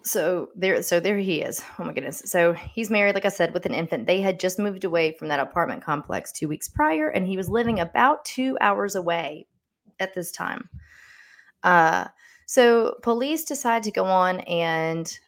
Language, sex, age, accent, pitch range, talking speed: English, female, 20-39, American, 165-210 Hz, 195 wpm